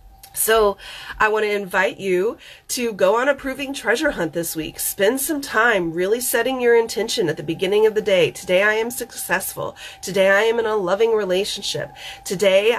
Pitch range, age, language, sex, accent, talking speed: 180-235 Hz, 30-49, English, female, American, 190 wpm